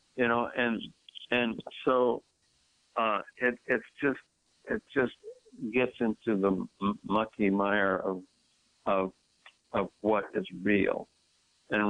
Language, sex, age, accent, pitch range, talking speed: English, male, 60-79, American, 95-110 Hz, 120 wpm